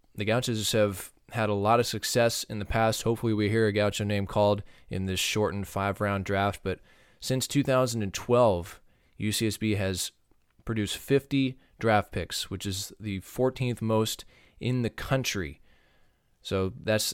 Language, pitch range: English, 95-110 Hz